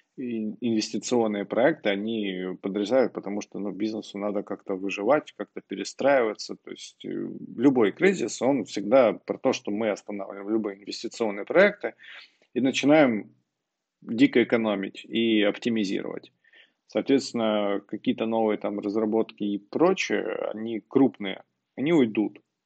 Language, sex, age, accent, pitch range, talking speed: Russian, male, 20-39, native, 105-115 Hz, 115 wpm